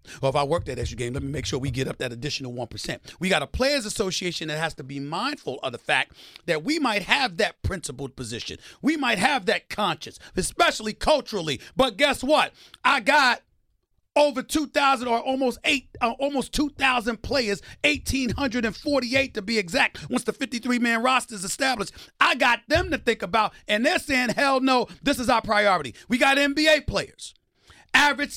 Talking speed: 185 wpm